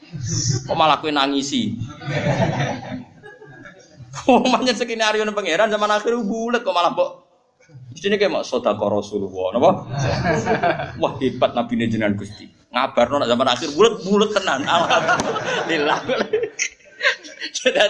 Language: Indonesian